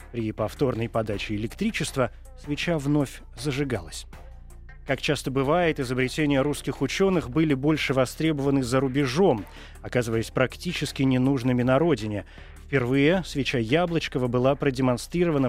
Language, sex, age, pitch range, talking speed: Russian, male, 20-39, 120-155 Hz, 110 wpm